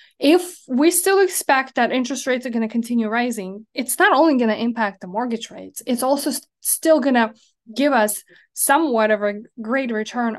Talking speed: 190 wpm